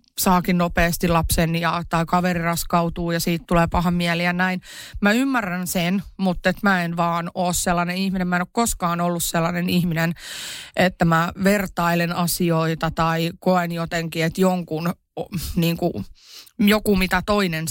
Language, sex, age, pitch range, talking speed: Finnish, female, 30-49, 170-215 Hz, 155 wpm